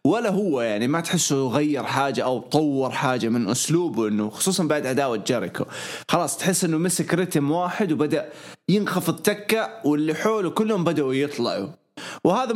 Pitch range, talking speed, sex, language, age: 120-170 Hz, 155 wpm, male, English, 20-39